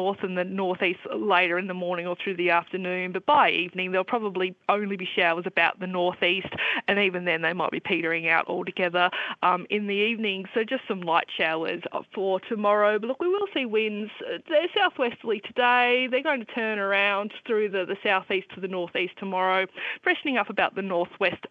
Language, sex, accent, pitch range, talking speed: English, female, Australian, 180-230 Hz, 195 wpm